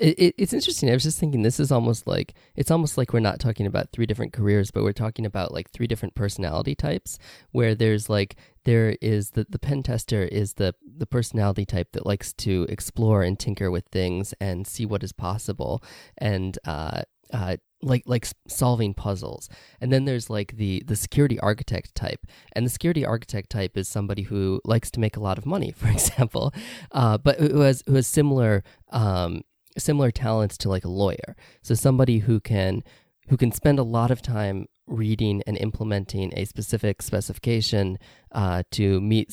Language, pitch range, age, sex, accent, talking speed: English, 100-120 Hz, 20-39, male, American, 190 wpm